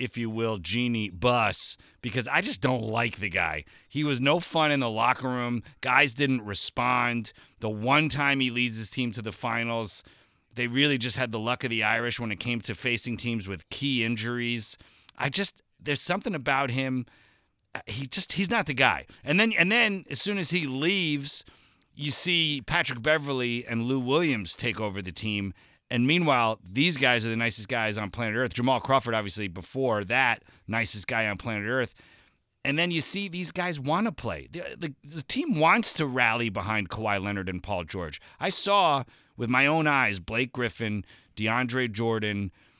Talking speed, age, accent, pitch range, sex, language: 190 wpm, 30-49, American, 110-140 Hz, male, English